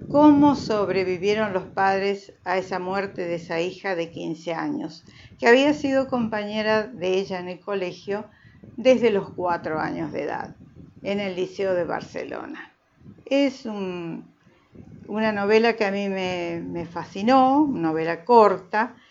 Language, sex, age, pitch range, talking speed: Spanish, female, 50-69, 175-220 Hz, 140 wpm